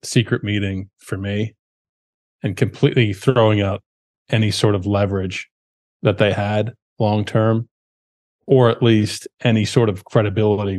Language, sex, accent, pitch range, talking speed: English, male, American, 100-125 Hz, 130 wpm